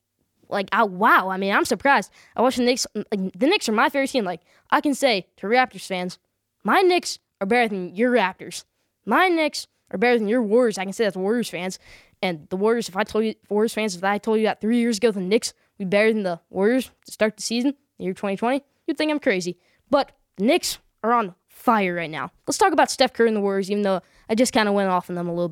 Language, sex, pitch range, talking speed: English, female, 200-265 Hz, 260 wpm